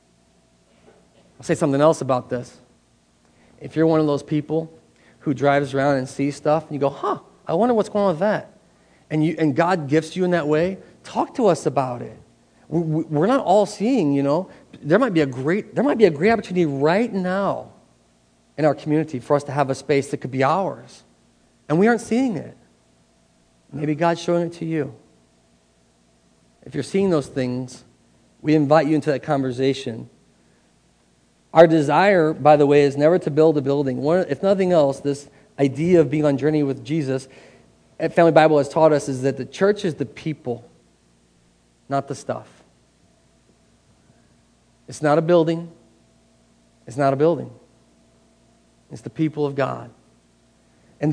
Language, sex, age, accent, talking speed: English, male, 40-59, American, 175 wpm